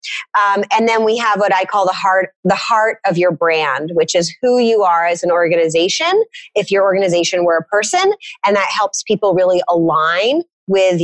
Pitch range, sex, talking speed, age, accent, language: 185-235 Hz, female, 190 wpm, 30-49, American, English